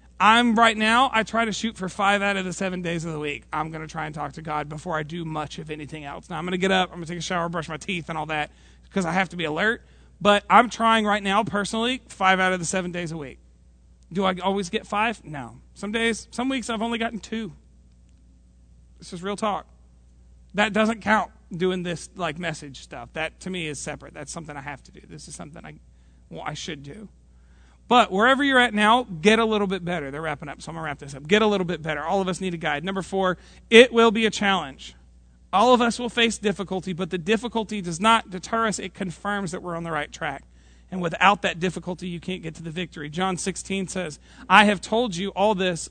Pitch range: 155-210 Hz